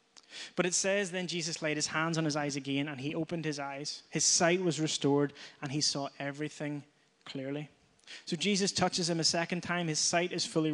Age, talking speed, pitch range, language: 20-39, 205 wpm, 145-170 Hz, English